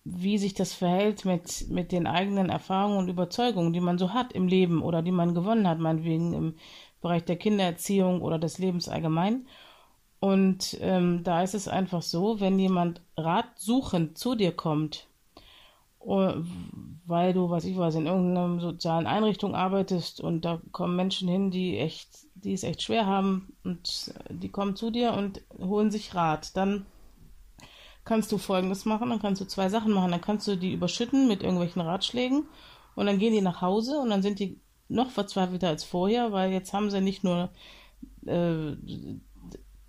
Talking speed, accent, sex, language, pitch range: 175 wpm, German, female, German, 175-210 Hz